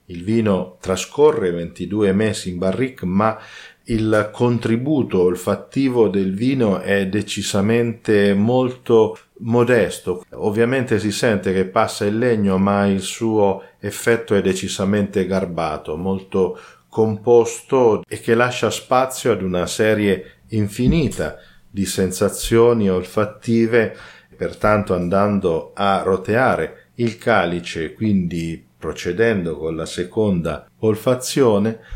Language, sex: Italian, male